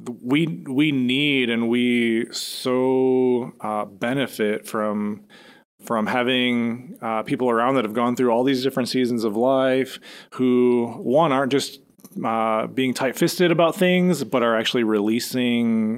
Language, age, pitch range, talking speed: English, 30-49, 115-140 Hz, 145 wpm